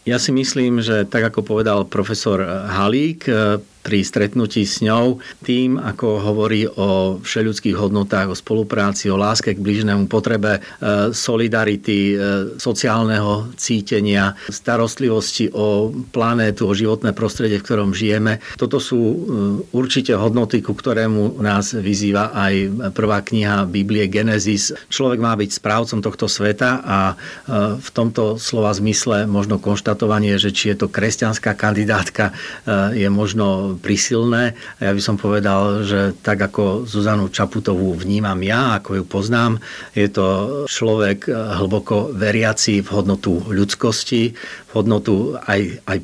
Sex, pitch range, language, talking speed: male, 100-115 Hz, Slovak, 130 wpm